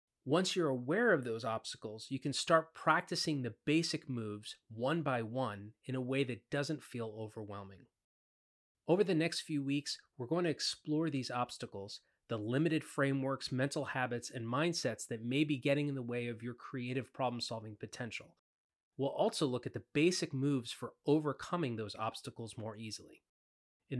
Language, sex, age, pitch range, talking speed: English, male, 30-49, 115-155 Hz, 170 wpm